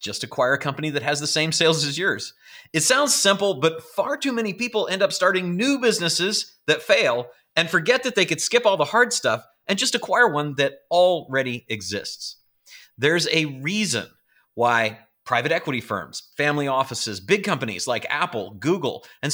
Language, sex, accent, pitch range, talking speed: English, male, American, 125-195 Hz, 180 wpm